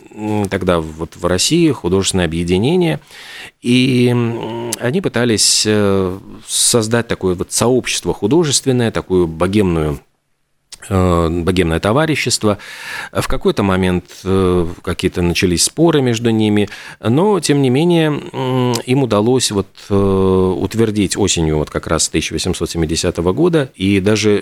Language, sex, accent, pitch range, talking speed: Russian, male, native, 85-110 Hz, 95 wpm